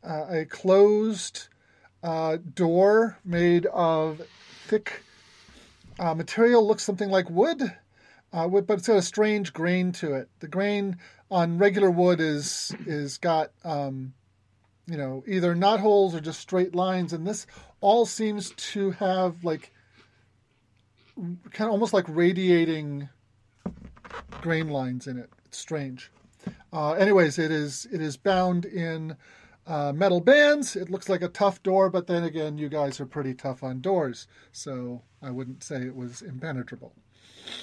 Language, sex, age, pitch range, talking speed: English, male, 40-59, 140-195 Hz, 150 wpm